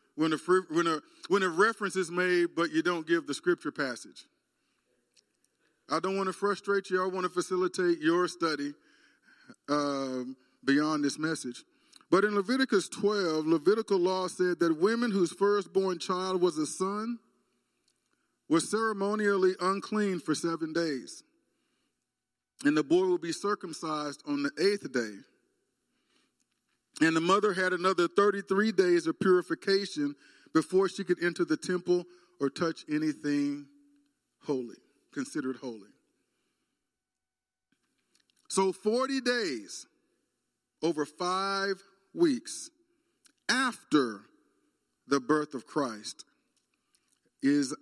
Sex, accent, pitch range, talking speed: male, American, 155-210 Hz, 120 wpm